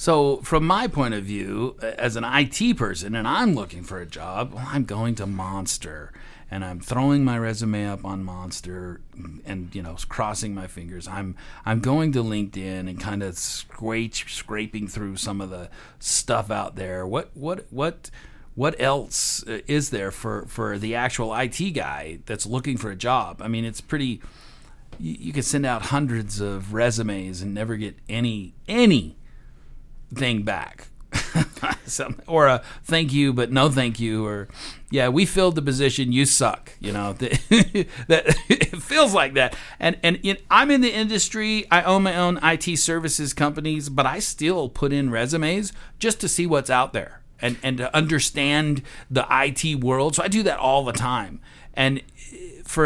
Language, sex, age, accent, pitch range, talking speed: English, male, 40-59, American, 105-150 Hz, 175 wpm